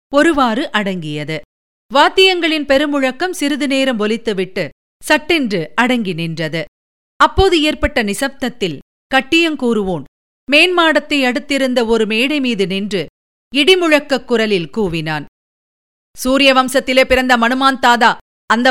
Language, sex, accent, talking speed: Tamil, female, native, 85 wpm